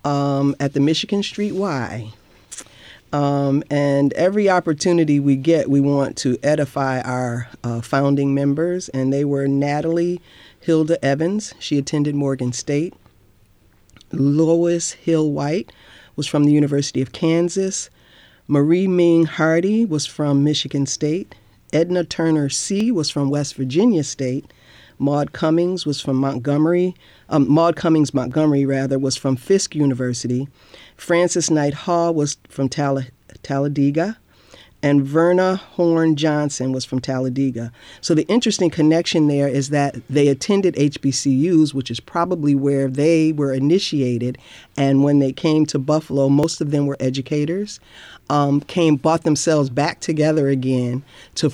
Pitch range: 135-160 Hz